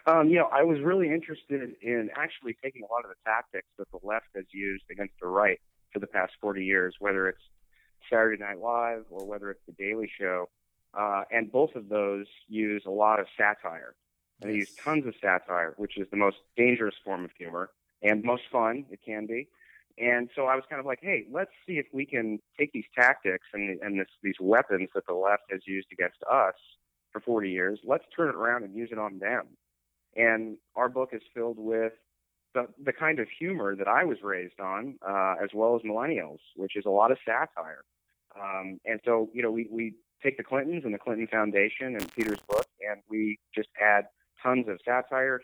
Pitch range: 100-120 Hz